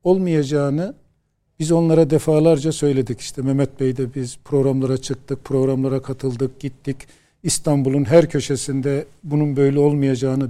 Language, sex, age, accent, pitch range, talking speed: Turkish, male, 50-69, native, 140-205 Hz, 120 wpm